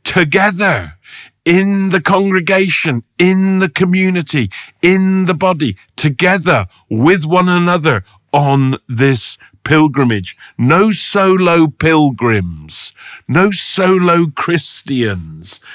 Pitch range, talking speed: 115-170 Hz, 90 wpm